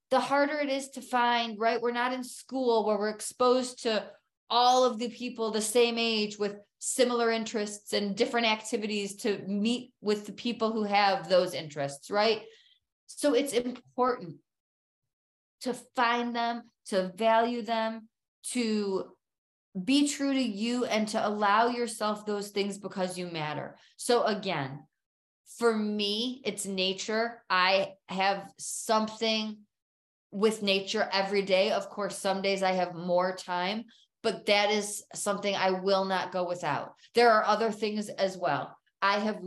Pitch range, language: 190-235 Hz, English